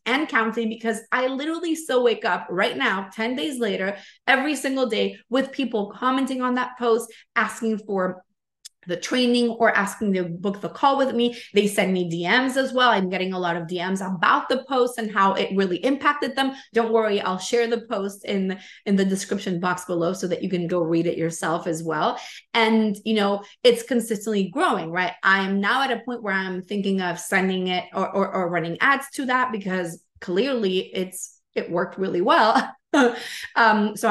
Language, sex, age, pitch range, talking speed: English, female, 20-39, 190-245 Hz, 195 wpm